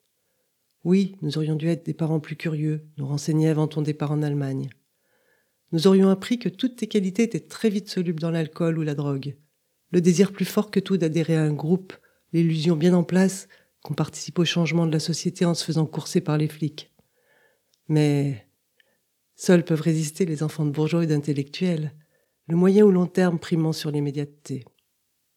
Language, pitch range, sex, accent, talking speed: French, 150-175 Hz, female, French, 185 wpm